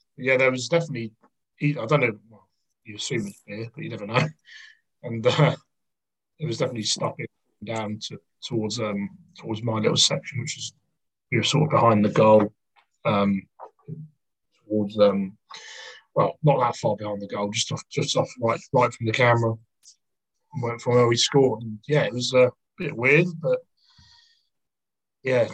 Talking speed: 170 wpm